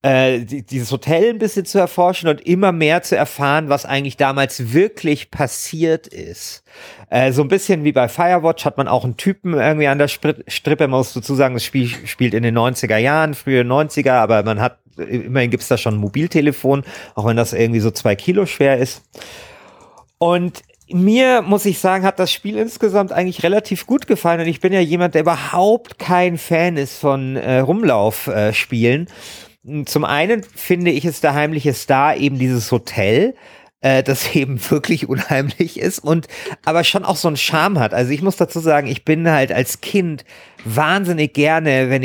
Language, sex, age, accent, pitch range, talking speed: German, male, 40-59, German, 125-170 Hz, 190 wpm